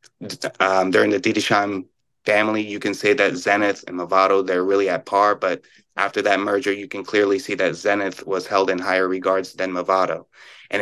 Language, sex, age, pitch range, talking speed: English, male, 30-49, 95-120 Hz, 190 wpm